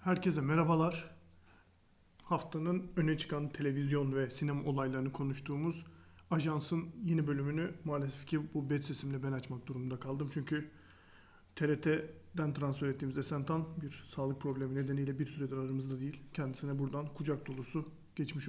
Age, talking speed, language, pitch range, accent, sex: 40-59, 130 wpm, Turkish, 135-170 Hz, native, male